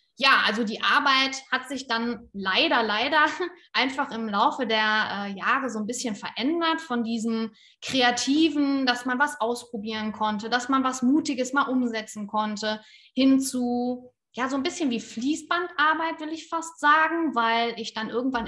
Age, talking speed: 20-39, 160 wpm